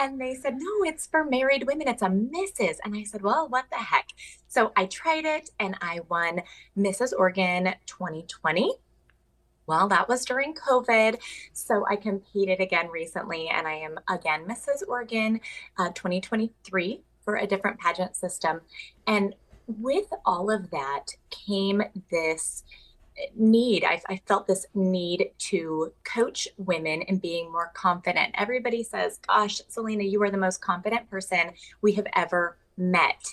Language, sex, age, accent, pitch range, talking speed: English, female, 20-39, American, 175-230 Hz, 155 wpm